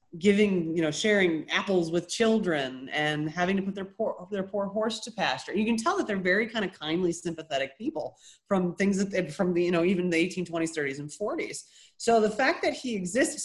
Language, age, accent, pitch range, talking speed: English, 30-49, American, 165-220 Hz, 220 wpm